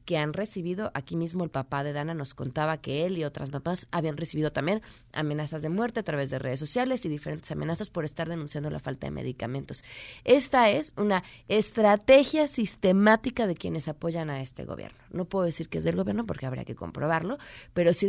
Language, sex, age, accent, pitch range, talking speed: Spanish, female, 30-49, Mexican, 145-210 Hz, 200 wpm